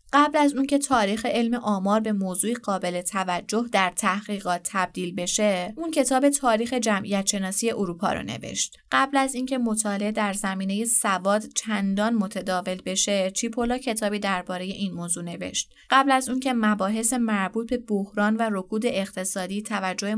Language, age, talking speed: Persian, 20-39, 150 wpm